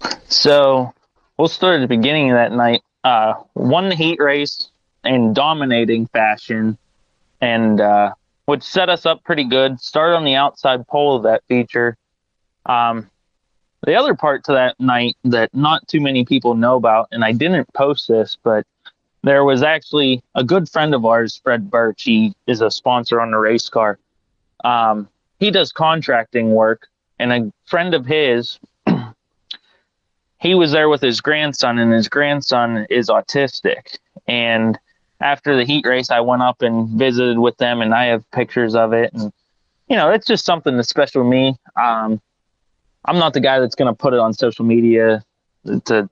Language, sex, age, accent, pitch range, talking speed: English, male, 20-39, American, 115-150 Hz, 175 wpm